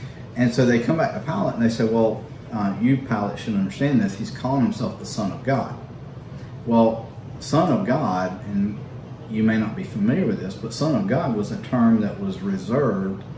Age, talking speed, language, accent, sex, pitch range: 40-59, 205 wpm, English, American, male, 110-135 Hz